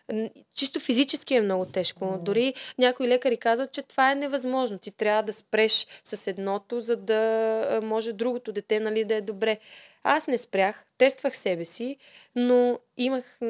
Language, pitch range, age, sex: Bulgarian, 205-255 Hz, 20-39, female